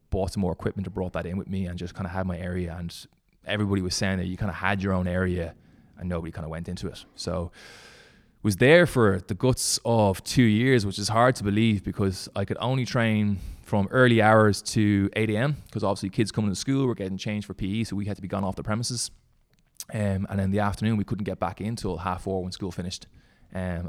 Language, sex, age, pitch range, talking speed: English, male, 20-39, 90-110 Hz, 245 wpm